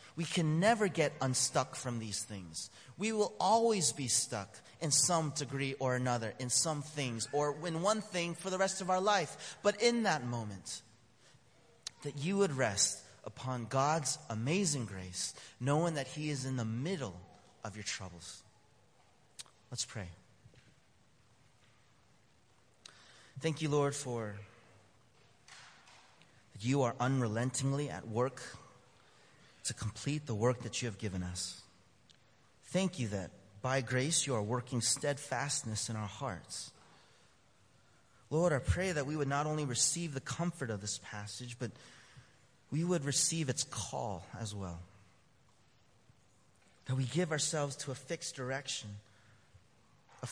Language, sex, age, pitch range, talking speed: English, male, 30-49, 110-145 Hz, 140 wpm